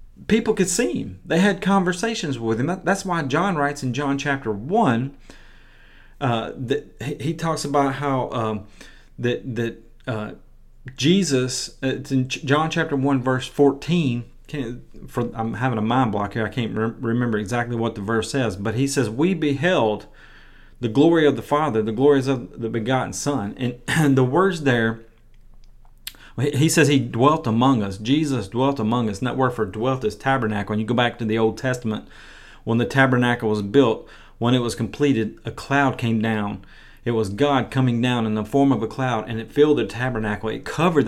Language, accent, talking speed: English, American, 190 wpm